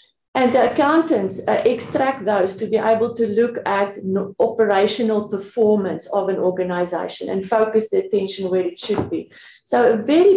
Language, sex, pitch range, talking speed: English, female, 190-230 Hz, 160 wpm